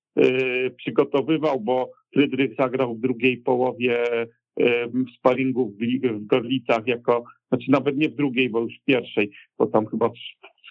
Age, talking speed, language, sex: 50-69, 140 wpm, Polish, male